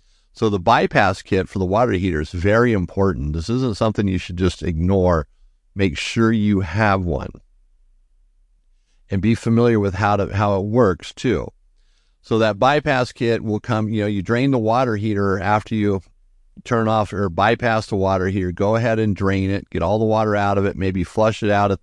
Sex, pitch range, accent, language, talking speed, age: male, 90-110 Hz, American, English, 200 wpm, 50-69